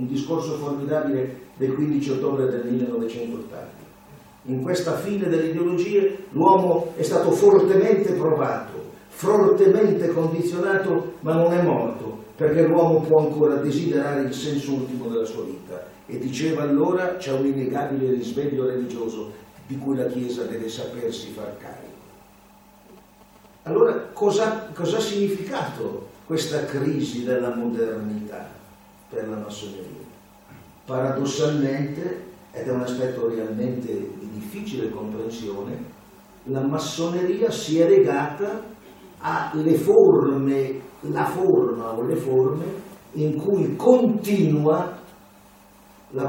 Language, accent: Italian, native